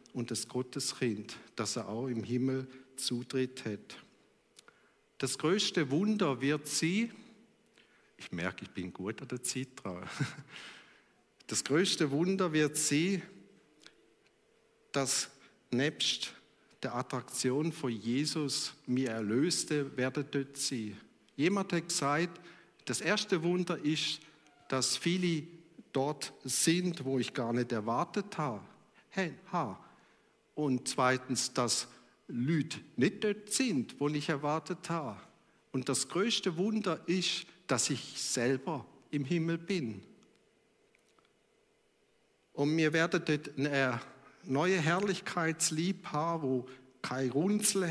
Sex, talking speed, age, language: male, 115 wpm, 50-69, German